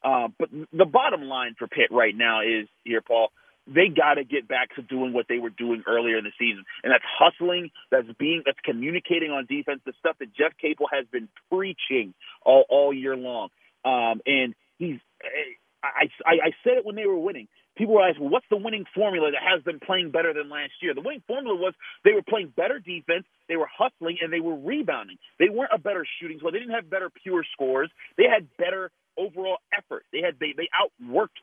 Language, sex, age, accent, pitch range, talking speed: English, male, 40-59, American, 150-245 Hz, 210 wpm